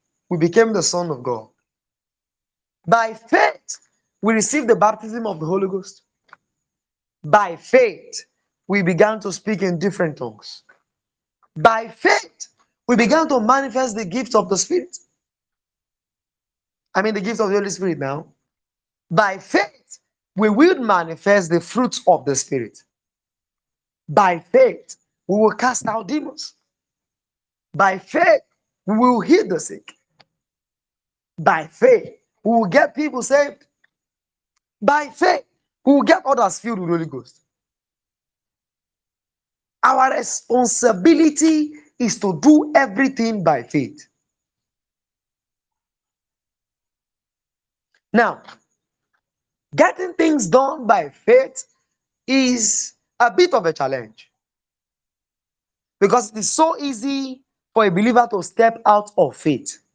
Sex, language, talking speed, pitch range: male, English, 120 wpm, 190-275 Hz